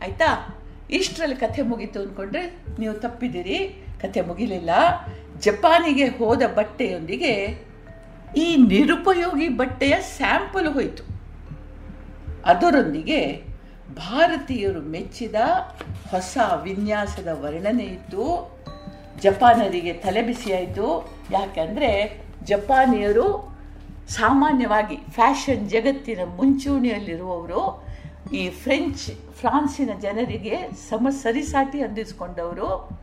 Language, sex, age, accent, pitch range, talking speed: Kannada, female, 50-69, native, 185-275 Hz, 75 wpm